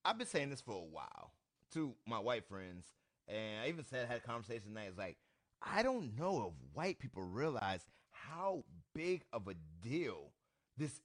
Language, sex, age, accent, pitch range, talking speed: English, male, 30-49, American, 120-170 Hz, 190 wpm